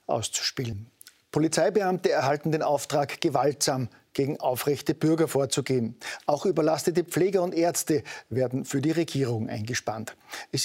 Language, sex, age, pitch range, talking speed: German, male, 50-69, 130-160 Hz, 120 wpm